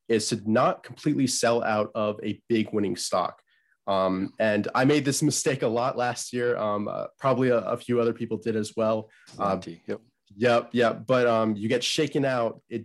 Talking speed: 195 wpm